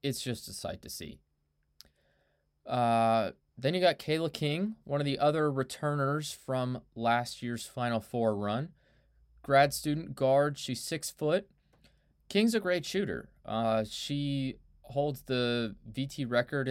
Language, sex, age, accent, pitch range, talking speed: English, male, 20-39, American, 110-145 Hz, 140 wpm